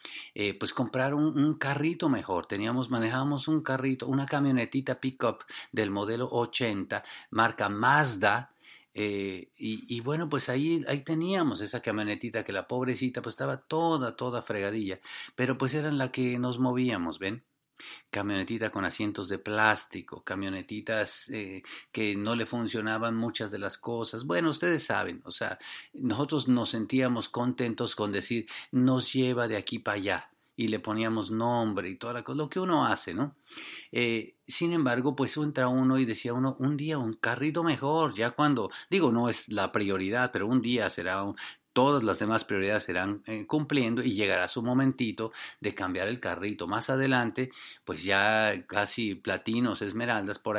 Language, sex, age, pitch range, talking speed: English, male, 40-59, 105-130 Hz, 165 wpm